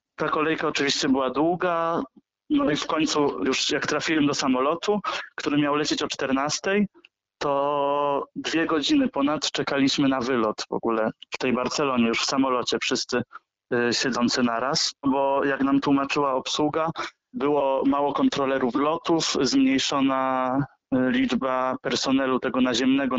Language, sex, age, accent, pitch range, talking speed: Polish, male, 20-39, native, 130-155 Hz, 130 wpm